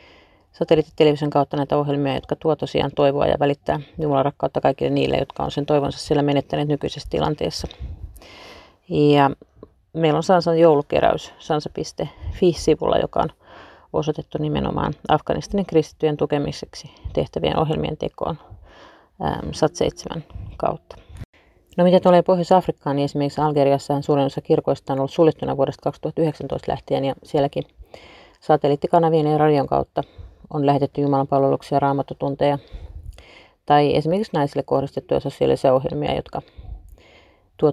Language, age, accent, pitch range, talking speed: Finnish, 30-49, native, 135-155 Hz, 120 wpm